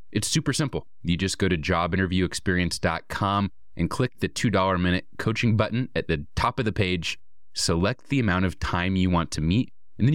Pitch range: 85-115 Hz